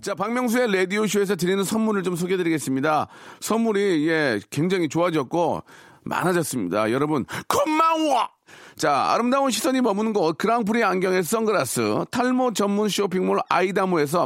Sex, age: male, 40-59